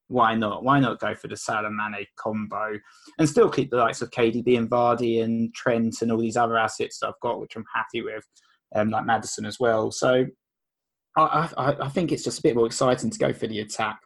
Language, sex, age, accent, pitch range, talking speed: English, male, 20-39, British, 110-130 Hz, 225 wpm